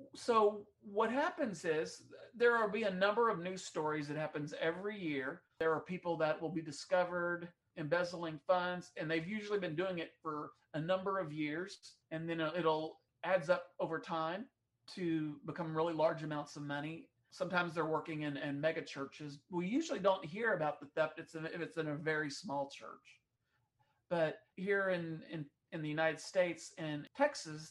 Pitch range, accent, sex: 155-190 Hz, American, male